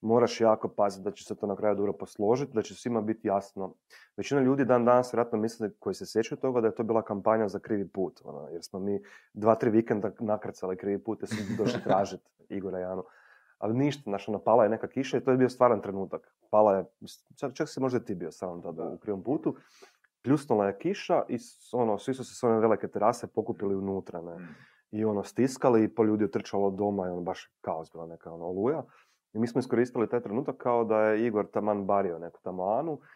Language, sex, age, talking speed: Croatian, male, 30-49, 215 wpm